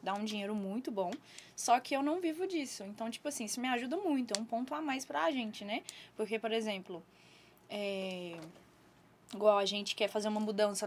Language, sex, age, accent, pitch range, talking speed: Portuguese, female, 10-29, Brazilian, 195-245 Hz, 200 wpm